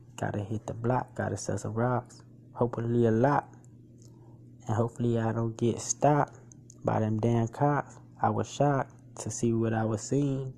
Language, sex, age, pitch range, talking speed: English, male, 20-39, 90-130 Hz, 170 wpm